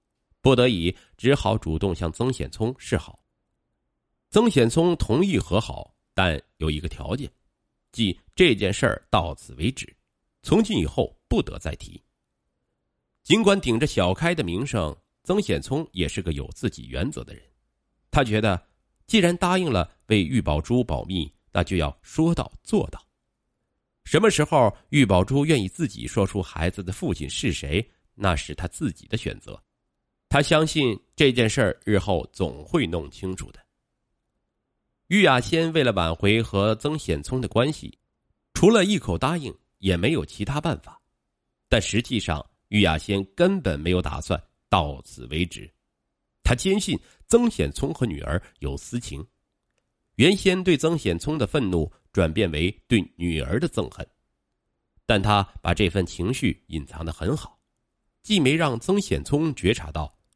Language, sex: Chinese, male